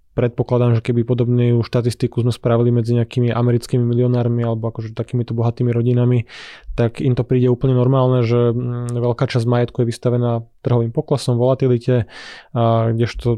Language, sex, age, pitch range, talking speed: Slovak, male, 20-39, 120-130 Hz, 145 wpm